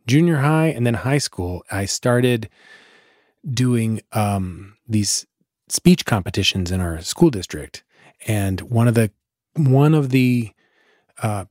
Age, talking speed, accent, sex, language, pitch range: 30-49, 130 wpm, American, male, English, 105-135 Hz